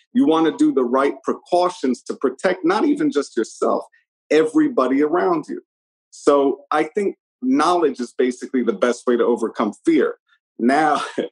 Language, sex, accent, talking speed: English, male, American, 155 wpm